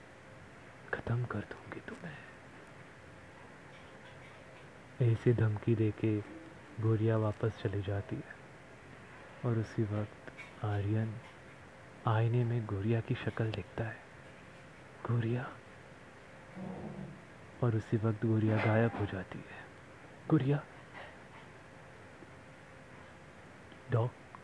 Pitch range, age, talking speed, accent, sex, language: 110-130 Hz, 30-49, 85 wpm, native, male, Hindi